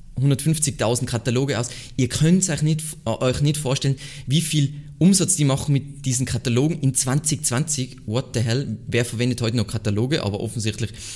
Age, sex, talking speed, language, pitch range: 20-39, male, 145 wpm, German, 115-140 Hz